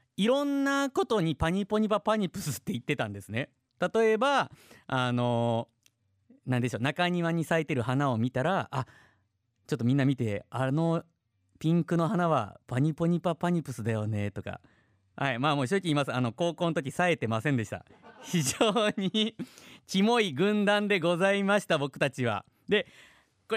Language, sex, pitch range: Japanese, male, 115-195 Hz